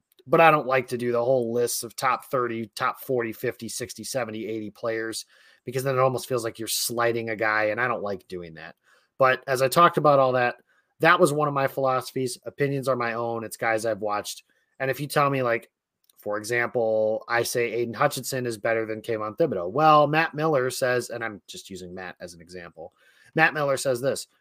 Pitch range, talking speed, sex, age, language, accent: 115-140 Hz, 220 wpm, male, 30-49, English, American